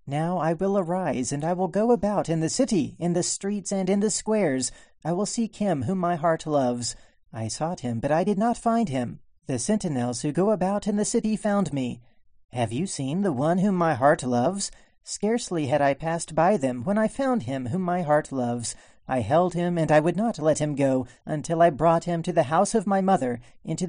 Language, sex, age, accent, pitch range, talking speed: English, male, 40-59, American, 140-205 Hz, 225 wpm